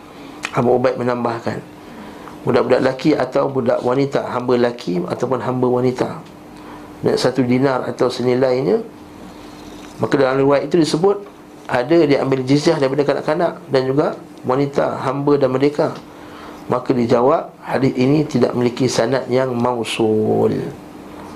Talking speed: 120 wpm